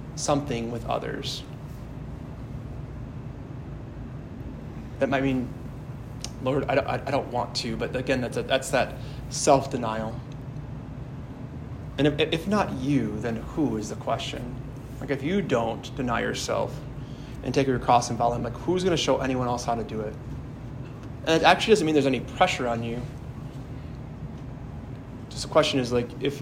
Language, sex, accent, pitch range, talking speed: English, male, American, 120-140 Hz, 155 wpm